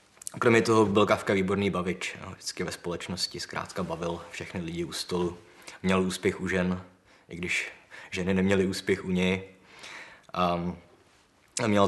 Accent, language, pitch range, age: native, Czech, 90-105 Hz, 20-39